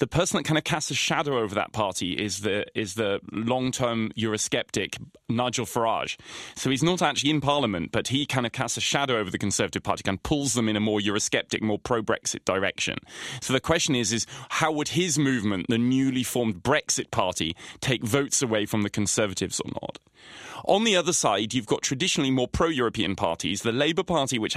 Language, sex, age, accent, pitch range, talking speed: English, male, 20-39, British, 110-145 Hz, 210 wpm